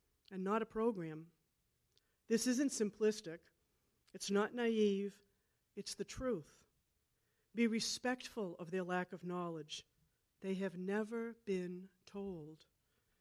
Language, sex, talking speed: English, female, 115 wpm